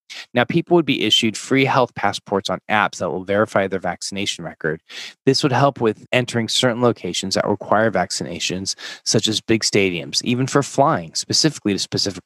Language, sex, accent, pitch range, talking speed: English, male, American, 100-125 Hz, 175 wpm